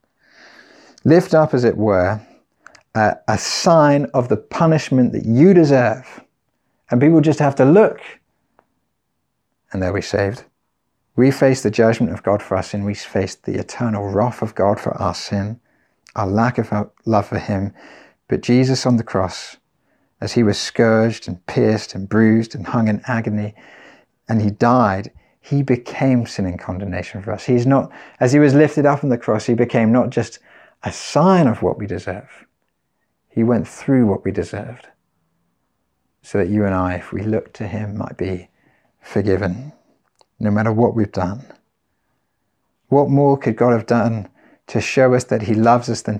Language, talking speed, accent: English, 175 wpm, British